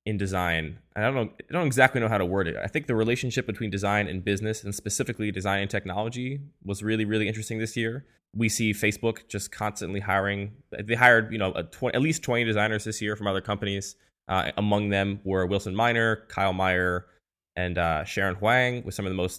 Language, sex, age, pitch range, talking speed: English, male, 10-29, 90-110 Hz, 215 wpm